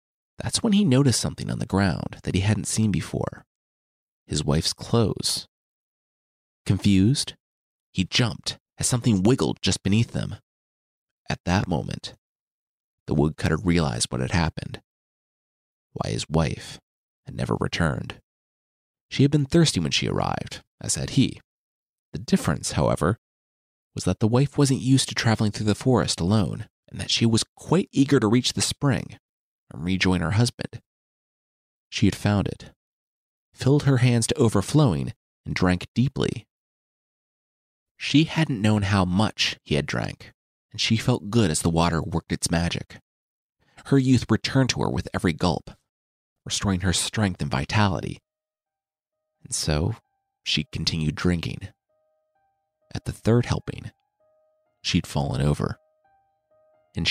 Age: 30-49